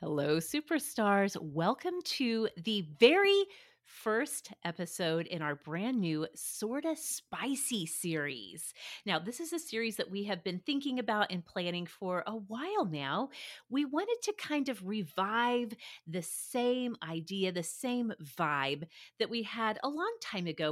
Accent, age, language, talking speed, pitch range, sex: American, 30-49, English, 150 wpm, 165-265 Hz, female